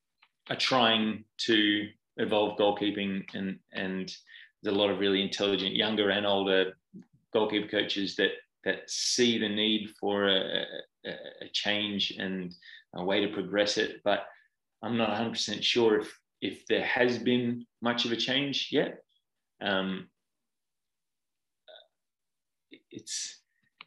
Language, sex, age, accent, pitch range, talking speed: English, male, 20-39, Australian, 100-115 Hz, 130 wpm